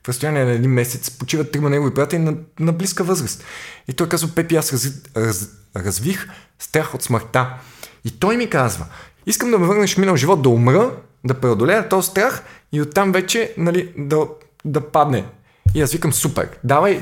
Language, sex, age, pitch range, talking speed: Bulgarian, male, 20-39, 120-165 Hz, 185 wpm